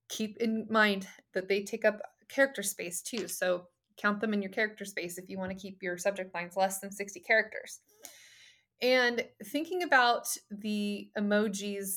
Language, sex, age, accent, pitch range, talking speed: English, female, 20-39, American, 190-235 Hz, 170 wpm